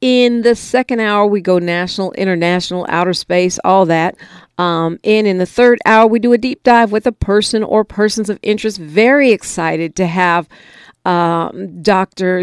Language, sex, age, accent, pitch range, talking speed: English, female, 50-69, American, 170-215 Hz, 175 wpm